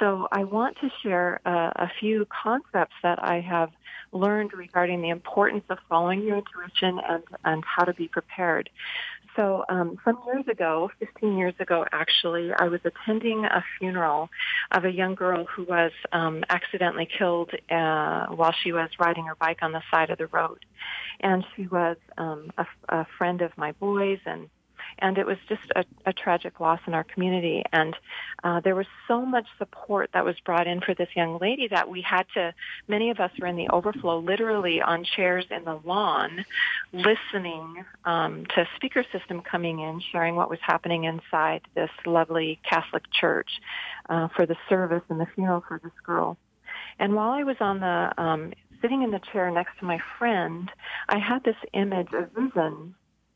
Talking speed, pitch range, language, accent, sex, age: 185 wpm, 170-200 Hz, English, American, female, 40-59